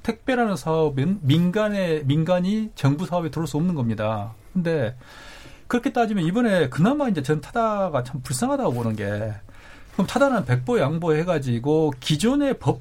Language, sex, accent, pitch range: Korean, male, native, 135-220 Hz